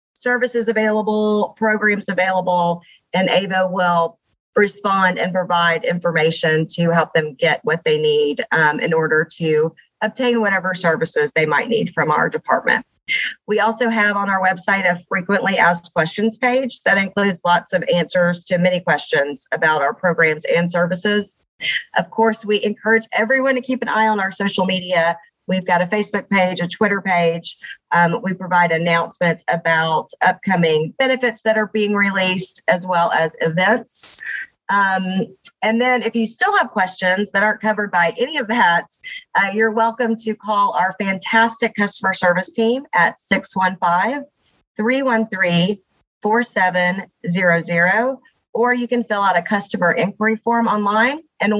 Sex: female